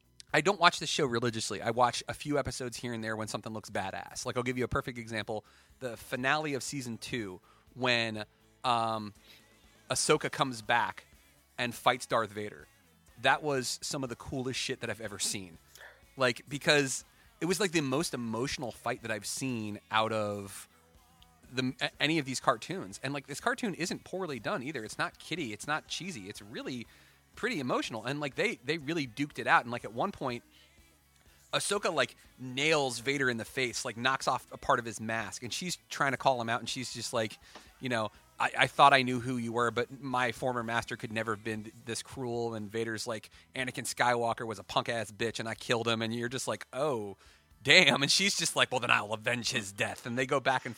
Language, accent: English, American